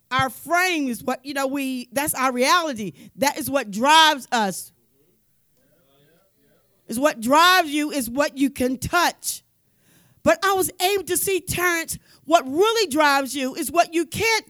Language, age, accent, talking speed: English, 40-59, American, 160 wpm